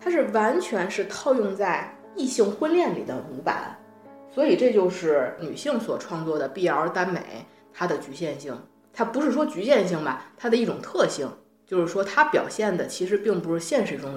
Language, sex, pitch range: Chinese, female, 160-245 Hz